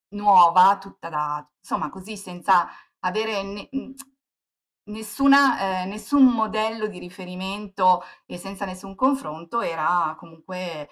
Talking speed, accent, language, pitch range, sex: 110 wpm, native, Italian, 170-215 Hz, female